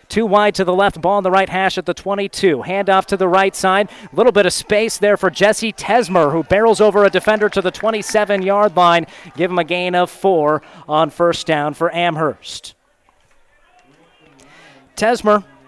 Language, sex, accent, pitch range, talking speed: English, male, American, 175-195 Hz, 185 wpm